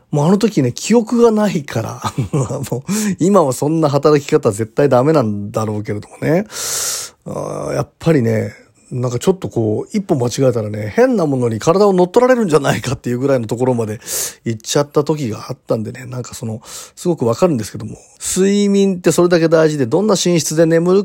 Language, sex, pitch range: Japanese, male, 120-180 Hz